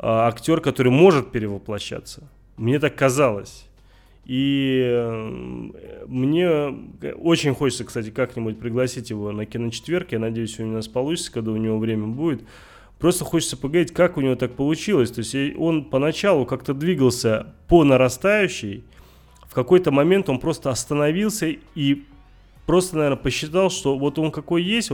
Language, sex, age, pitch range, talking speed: Russian, male, 30-49, 115-150 Hz, 145 wpm